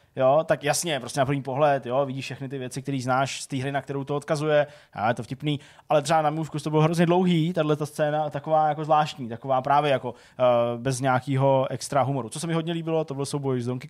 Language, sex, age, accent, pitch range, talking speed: Czech, male, 20-39, native, 130-155 Hz, 245 wpm